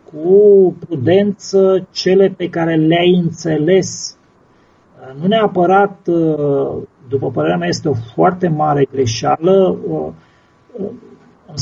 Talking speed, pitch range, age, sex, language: 95 wpm, 160-210 Hz, 30-49, male, Romanian